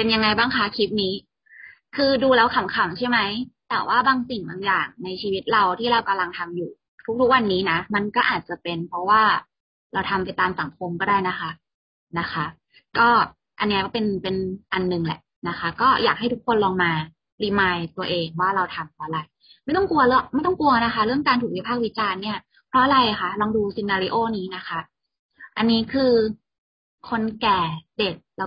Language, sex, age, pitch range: Thai, female, 20-39, 190-250 Hz